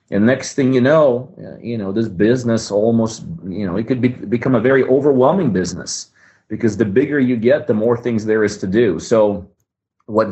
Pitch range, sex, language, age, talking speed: 95-115 Hz, male, English, 40-59, 190 wpm